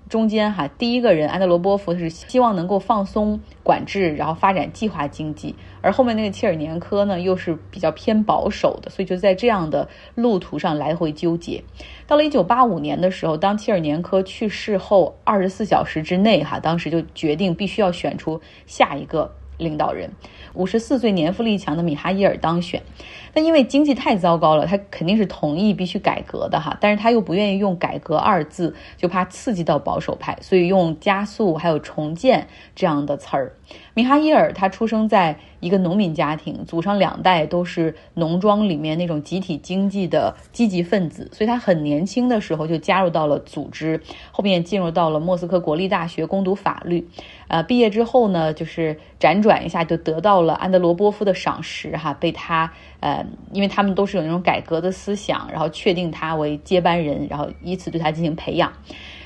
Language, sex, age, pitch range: Chinese, female, 30-49, 160-205 Hz